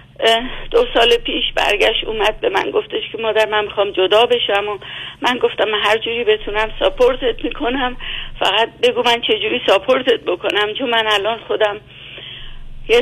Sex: female